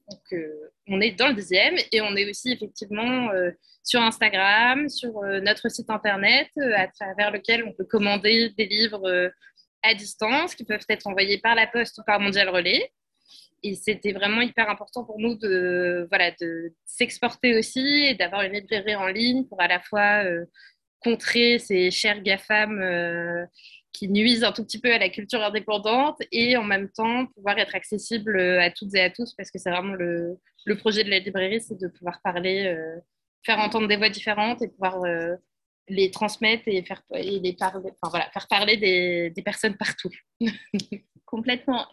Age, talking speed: 20-39, 185 wpm